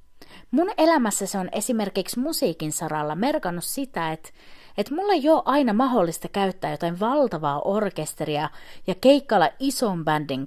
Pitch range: 175-275 Hz